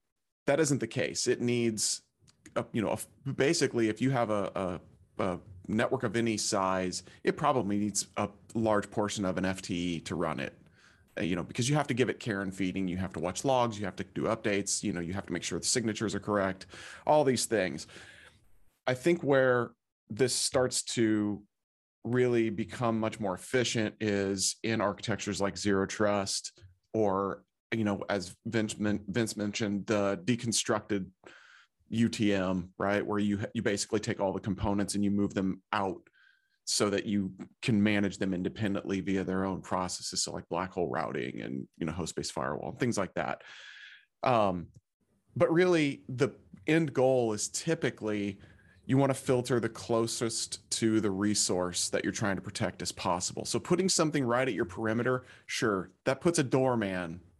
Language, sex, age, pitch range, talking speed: English, male, 30-49, 95-120 Hz, 175 wpm